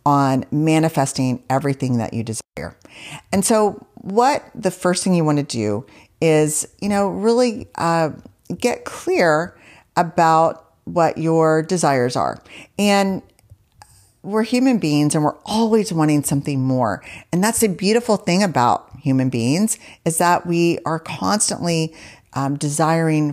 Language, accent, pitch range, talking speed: English, American, 135-180 Hz, 135 wpm